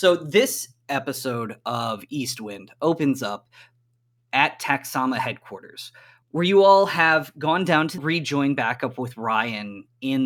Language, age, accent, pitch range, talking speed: English, 20-39, American, 130-160 Hz, 130 wpm